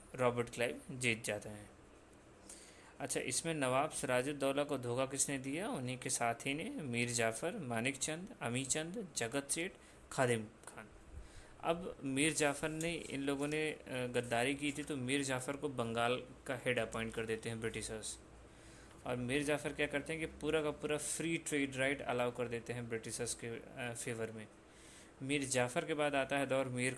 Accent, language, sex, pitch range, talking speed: Indian, English, male, 120-140 Hz, 120 wpm